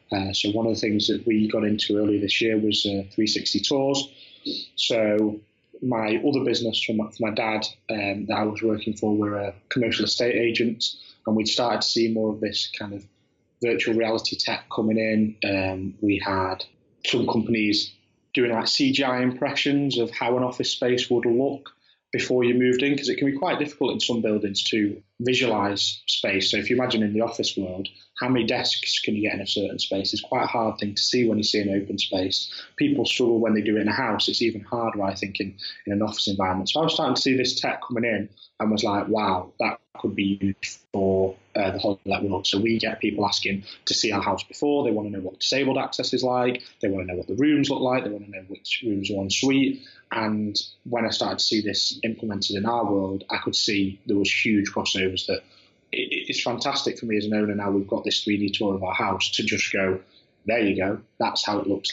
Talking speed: 230 wpm